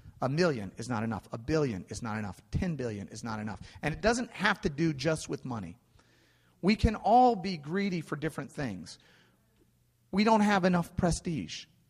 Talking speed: 185 wpm